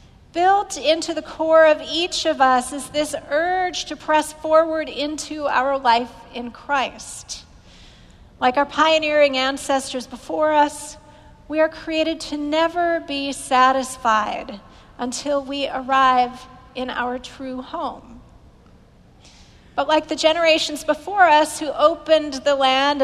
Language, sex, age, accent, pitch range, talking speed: English, female, 40-59, American, 255-315 Hz, 130 wpm